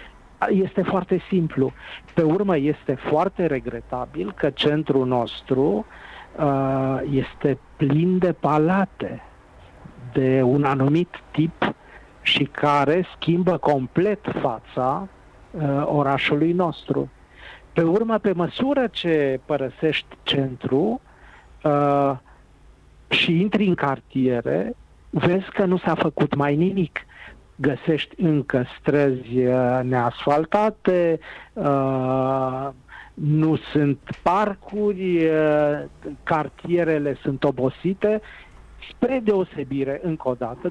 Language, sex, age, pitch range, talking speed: Romanian, male, 50-69, 135-170 Hz, 90 wpm